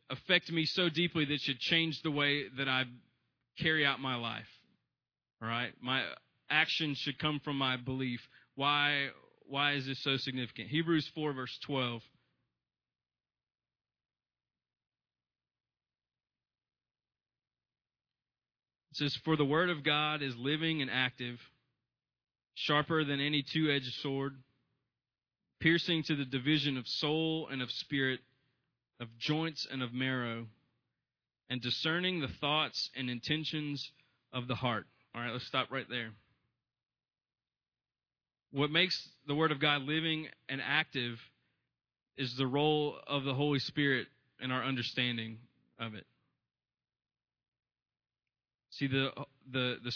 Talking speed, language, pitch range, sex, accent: 125 wpm, English, 125-150 Hz, male, American